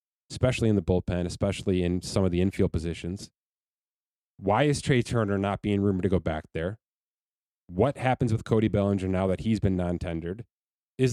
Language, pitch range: English, 90-120 Hz